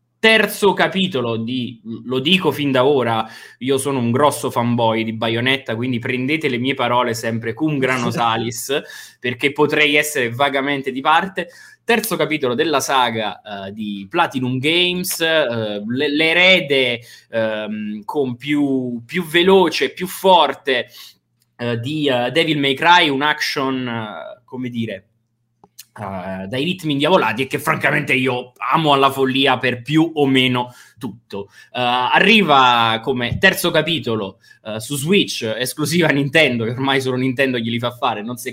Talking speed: 150 wpm